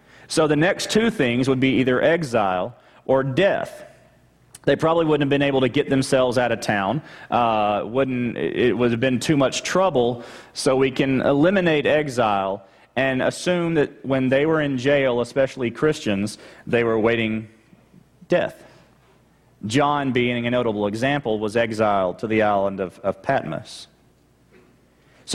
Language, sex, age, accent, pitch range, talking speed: English, male, 30-49, American, 125-155 Hz, 155 wpm